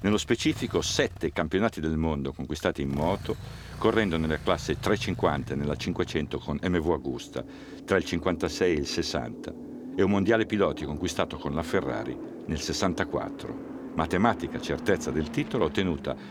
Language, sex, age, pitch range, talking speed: Italian, male, 50-69, 80-110 Hz, 145 wpm